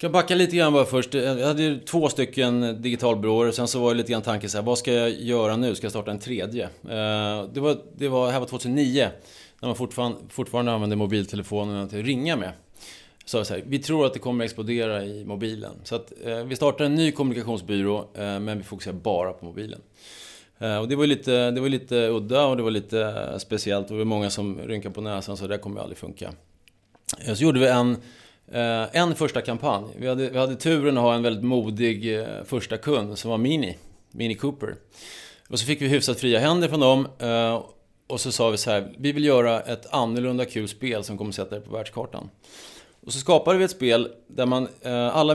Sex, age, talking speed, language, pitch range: male, 30-49, 210 wpm, English, 105-130 Hz